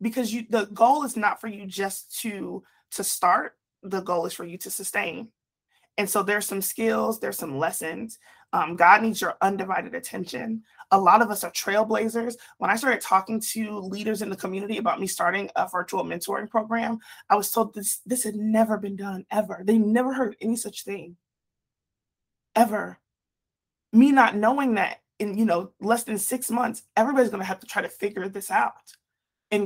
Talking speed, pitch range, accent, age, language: 190 wpm, 195-230 Hz, American, 30-49, English